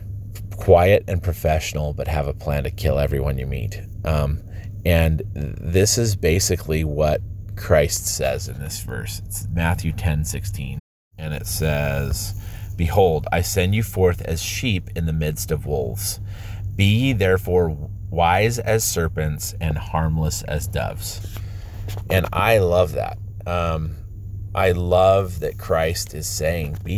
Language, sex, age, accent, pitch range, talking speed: English, male, 30-49, American, 85-100 Hz, 140 wpm